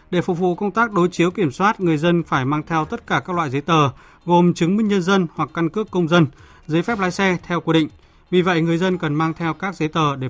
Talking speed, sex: 280 wpm, male